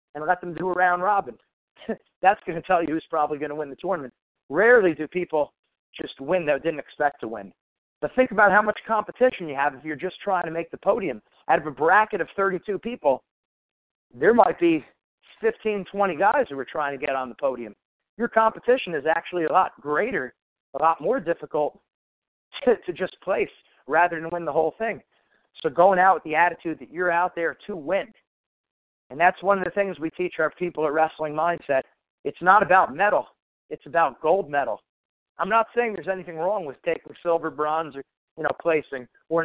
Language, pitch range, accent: English, 155-185 Hz, American